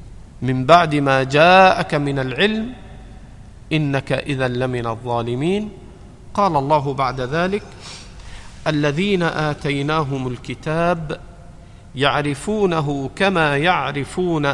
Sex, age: male, 50-69